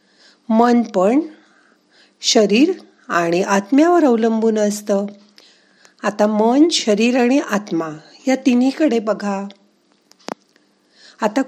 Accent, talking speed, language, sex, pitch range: native, 85 wpm, Marathi, female, 190-250 Hz